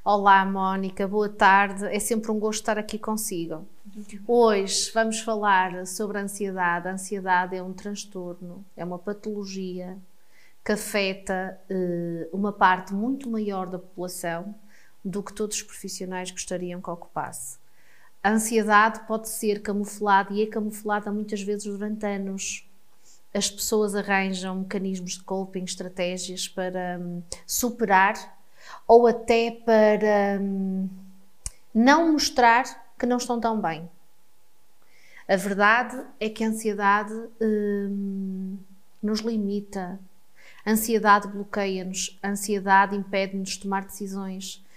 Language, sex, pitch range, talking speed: Portuguese, female, 190-220 Hz, 120 wpm